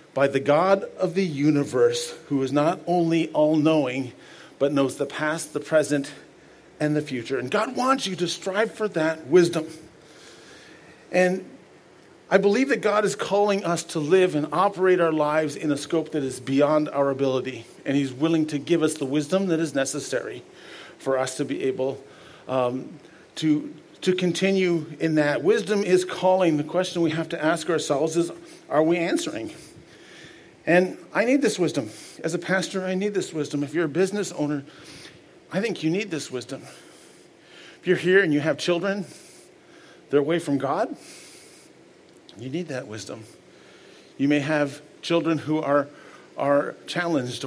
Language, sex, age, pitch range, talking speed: English, male, 50-69, 140-175 Hz, 170 wpm